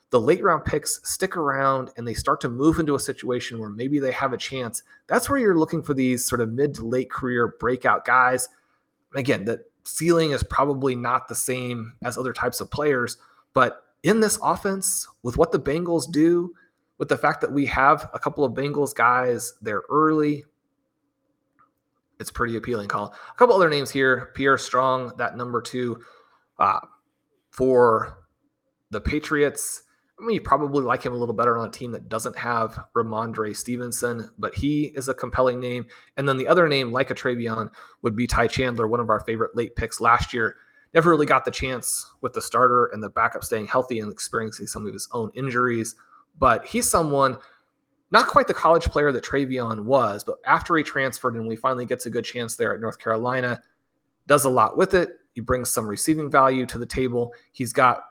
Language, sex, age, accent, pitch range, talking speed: English, male, 30-49, American, 120-145 Hz, 195 wpm